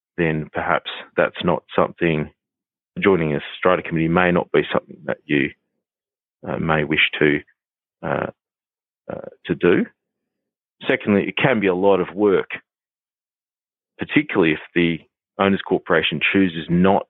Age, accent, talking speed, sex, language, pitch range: 30-49, Australian, 135 wpm, male, English, 90-105 Hz